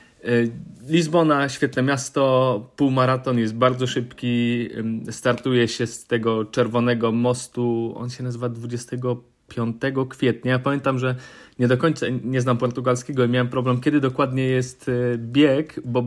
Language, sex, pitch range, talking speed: Polish, male, 120-135 Hz, 130 wpm